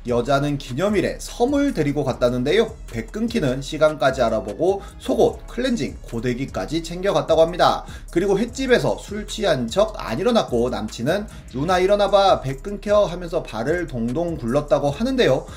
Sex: male